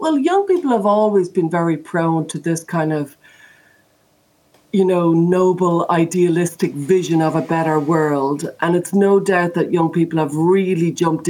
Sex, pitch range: female, 150-195 Hz